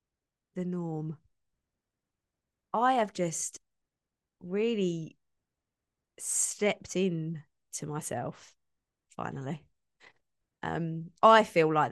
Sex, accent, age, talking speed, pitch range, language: female, British, 20-39, 75 wpm, 155-190 Hz, English